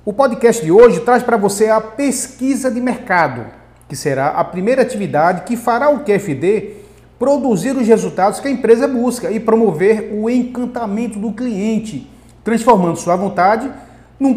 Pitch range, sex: 180-235 Hz, male